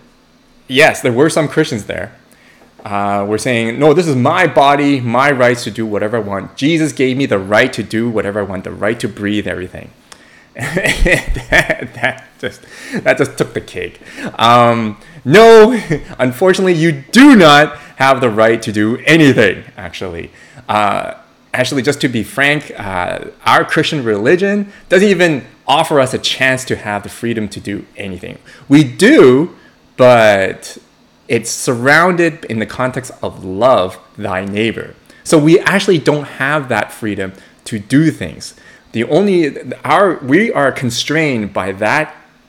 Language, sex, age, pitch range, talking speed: English, male, 20-39, 105-150 Hz, 155 wpm